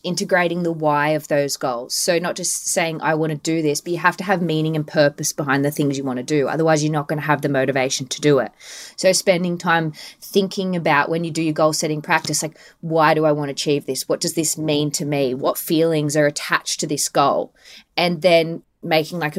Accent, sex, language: Australian, female, English